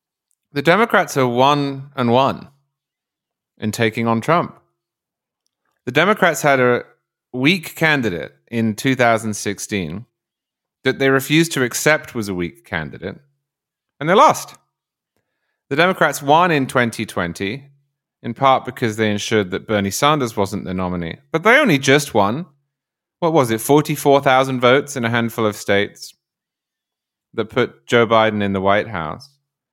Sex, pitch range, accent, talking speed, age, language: male, 110-145 Hz, British, 140 wpm, 30-49, English